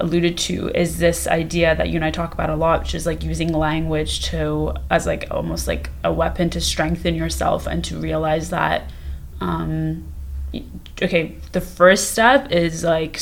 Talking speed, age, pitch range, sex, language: 175 wpm, 20-39, 150-170 Hz, female, English